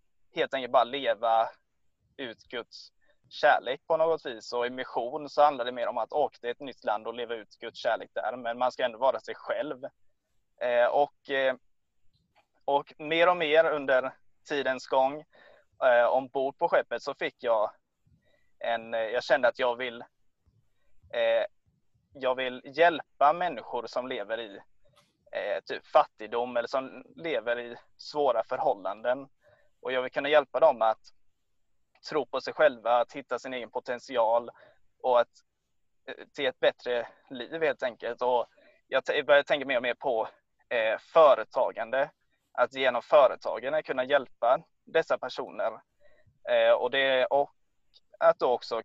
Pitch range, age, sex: 120-150 Hz, 20-39, male